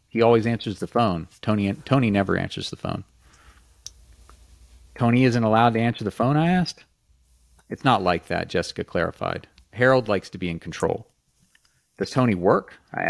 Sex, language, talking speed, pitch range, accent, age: male, English, 165 wpm, 90-110 Hz, American, 40-59